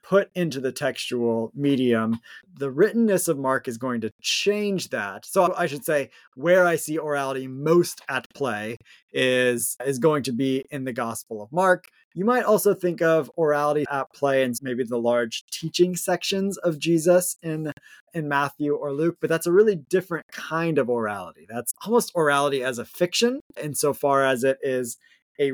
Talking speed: 175 wpm